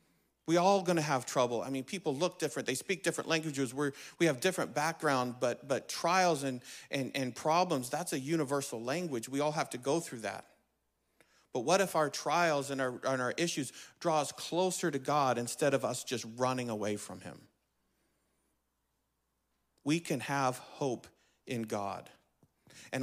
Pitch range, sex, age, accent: 120-145 Hz, male, 50-69, American